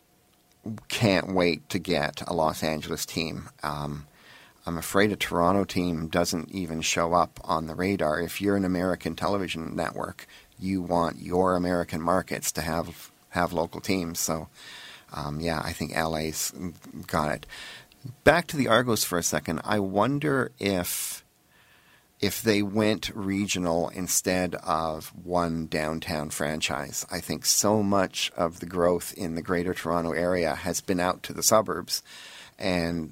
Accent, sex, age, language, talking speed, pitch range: American, male, 40-59, English, 150 wpm, 80-100 Hz